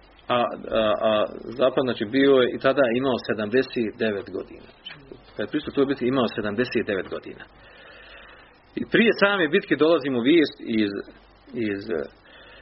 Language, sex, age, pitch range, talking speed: Croatian, male, 40-59, 110-140 Hz, 135 wpm